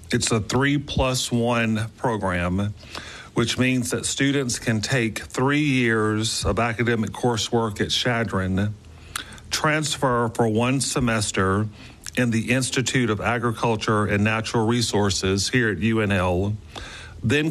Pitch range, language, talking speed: 105-120 Hz, English, 115 wpm